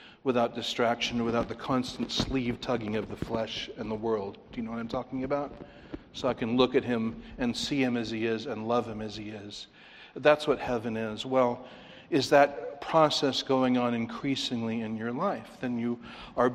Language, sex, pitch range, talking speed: English, male, 110-140 Hz, 195 wpm